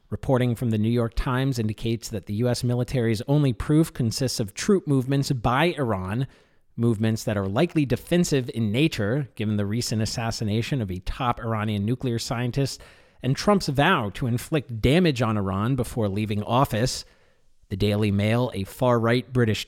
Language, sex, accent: English, male, American